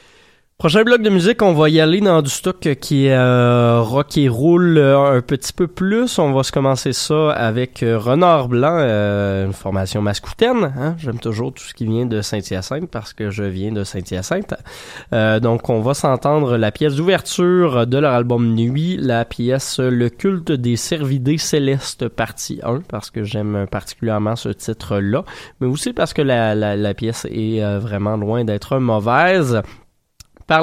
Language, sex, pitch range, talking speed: French, male, 110-145 Hz, 175 wpm